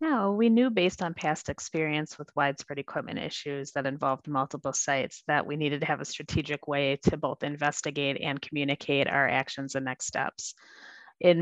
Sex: female